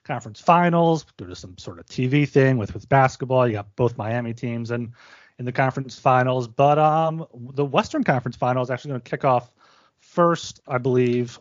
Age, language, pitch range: 30-49, English, 115-145 Hz